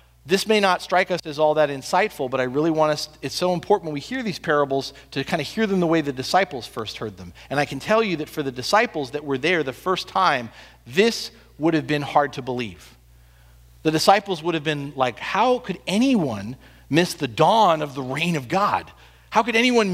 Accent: American